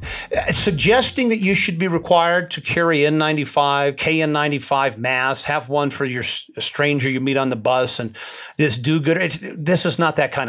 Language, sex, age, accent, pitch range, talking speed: English, male, 50-69, American, 135-195 Hz, 190 wpm